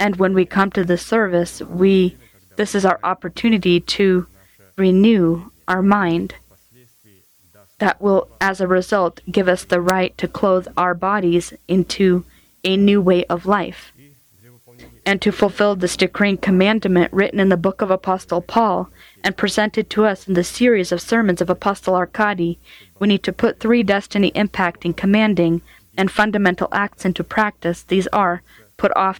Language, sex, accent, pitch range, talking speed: English, female, American, 175-200 Hz, 160 wpm